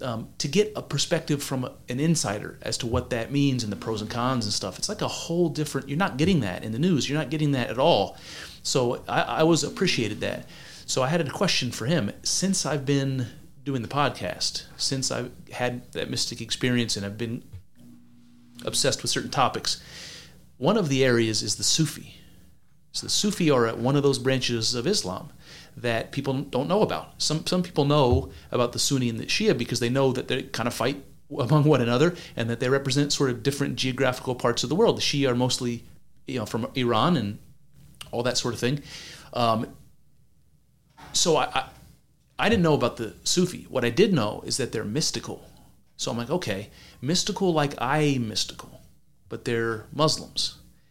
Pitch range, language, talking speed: 120-155 Hz, English, 200 wpm